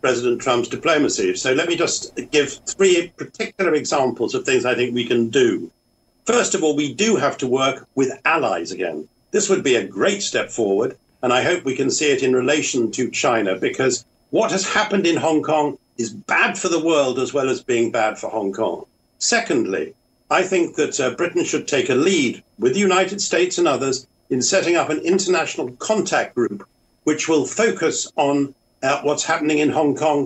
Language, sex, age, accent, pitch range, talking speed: English, male, 50-69, British, 140-195 Hz, 200 wpm